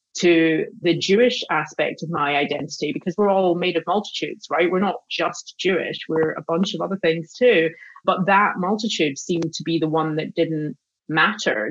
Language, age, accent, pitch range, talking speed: English, 30-49, British, 160-195 Hz, 185 wpm